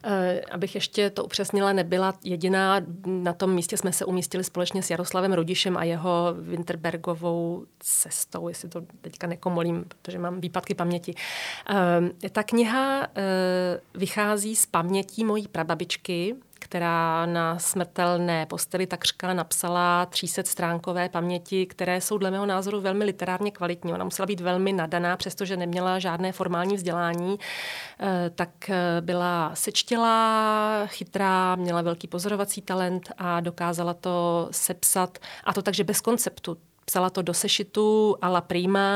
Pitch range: 175-195 Hz